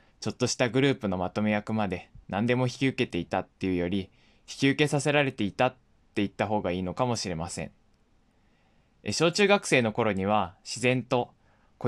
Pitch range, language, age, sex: 100-125 Hz, Japanese, 20-39, male